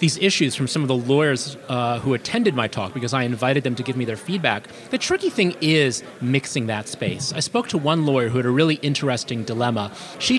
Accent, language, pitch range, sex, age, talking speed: American, English, 130-180 Hz, male, 30-49, 230 wpm